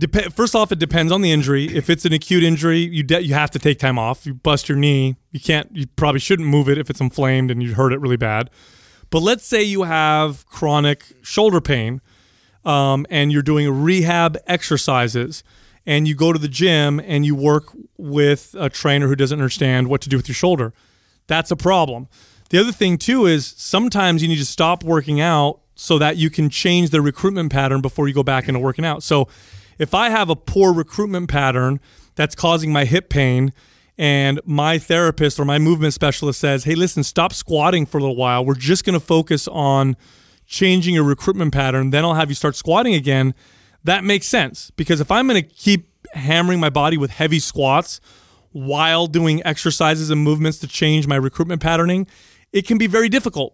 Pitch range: 135-170 Hz